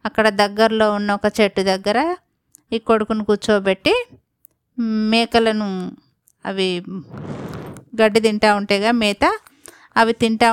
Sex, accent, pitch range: female, native, 200-235 Hz